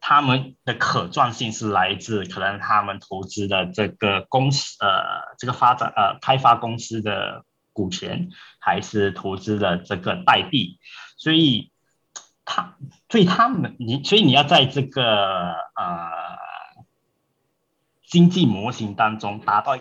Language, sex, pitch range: Chinese, male, 105-155 Hz